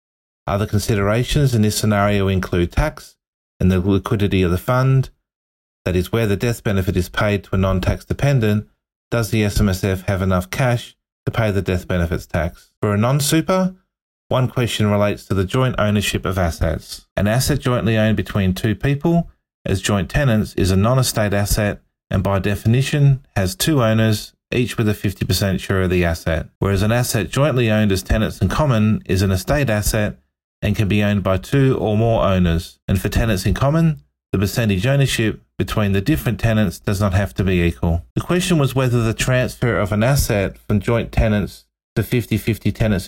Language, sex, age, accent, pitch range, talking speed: English, male, 30-49, Australian, 95-120 Hz, 185 wpm